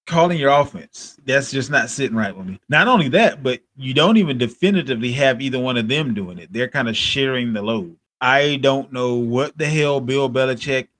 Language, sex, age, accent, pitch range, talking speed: English, male, 30-49, American, 120-165 Hz, 215 wpm